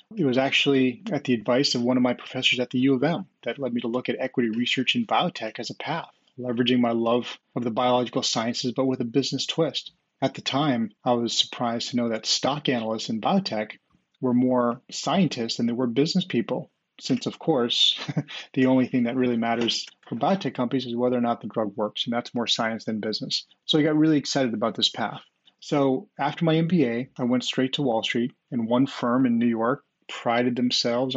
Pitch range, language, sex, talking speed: 120-135 Hz, English, male, 220 wpm